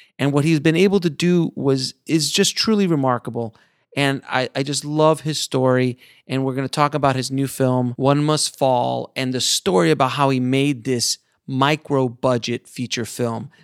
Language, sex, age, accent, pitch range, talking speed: English, male, 30-49, American, 120-150 Hz, 185 wpm